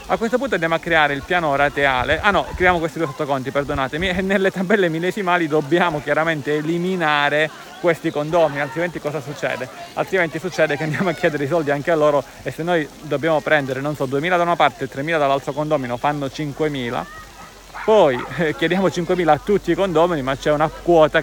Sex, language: male, Italian